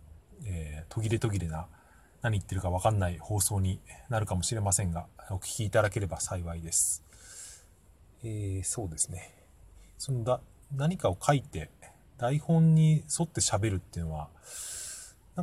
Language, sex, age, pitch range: Japanese, male, 30-49, 85-130 Hz